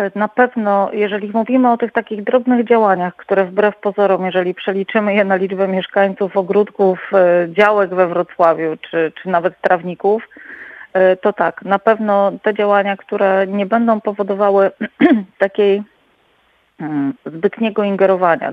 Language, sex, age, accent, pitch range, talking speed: Polish, female, 40-59, native, 170-205 Hz, 125 wpm